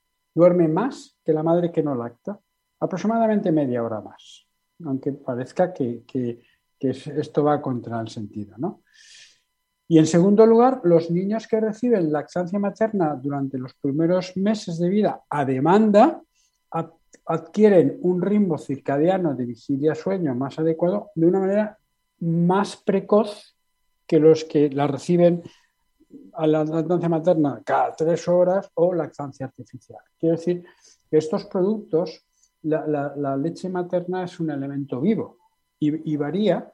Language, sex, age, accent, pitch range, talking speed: Spanish, male, 60-79, Spanish, 145-200 Hz, 140 wpm